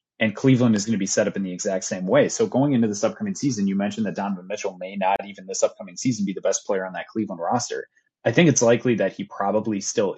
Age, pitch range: 30-49, 105-135 Hz